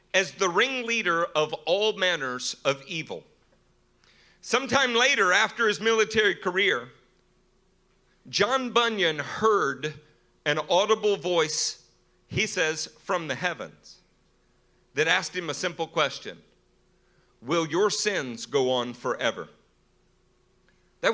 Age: 50-69